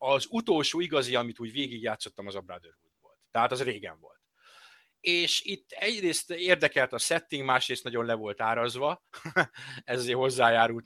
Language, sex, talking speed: Hungarian, male, 150 wpm